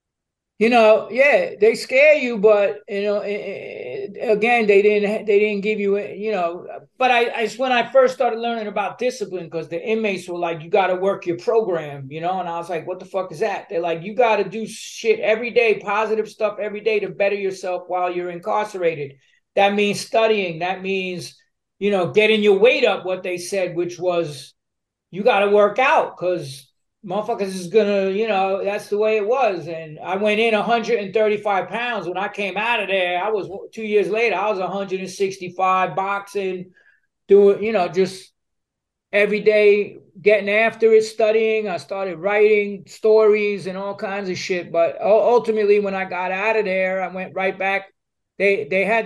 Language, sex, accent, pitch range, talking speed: English, male, American, 185-220 Hz, 190 wpm